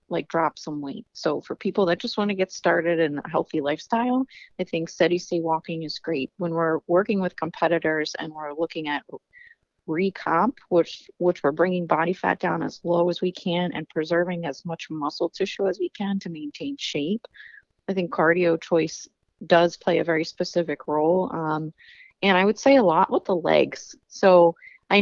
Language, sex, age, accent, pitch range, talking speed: English, female, 30-49, American, 160-195 Hz, 190 wpm